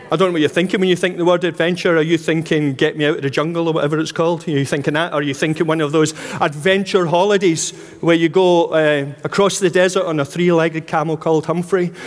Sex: male